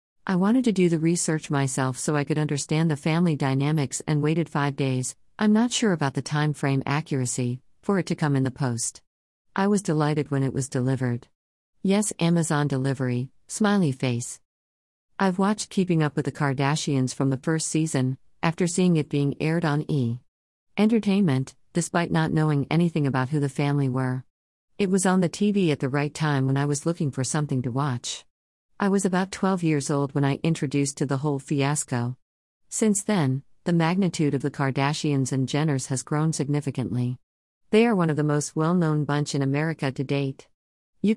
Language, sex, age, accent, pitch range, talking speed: English, female, 50-69, American, 130-165 Hz, 185 wpm